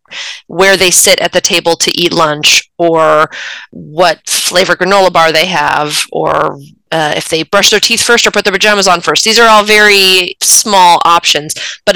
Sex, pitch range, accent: female, 160-200 Hz, American